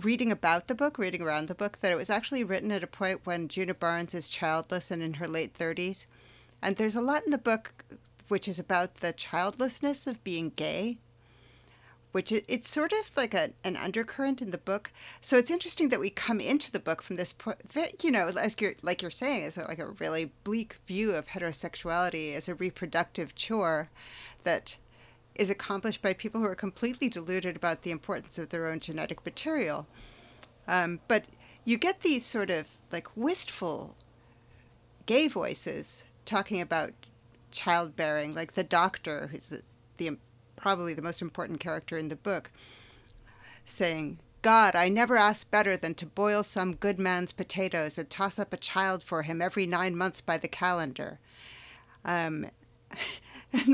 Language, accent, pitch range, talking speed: English, American, 160-215 Hz, 175 wpm